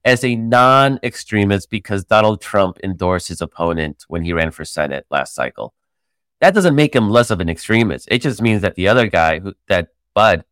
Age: 30-49